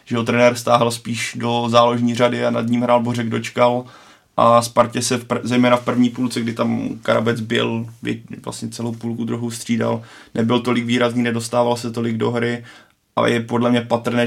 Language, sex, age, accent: Czech, male, 20-39, native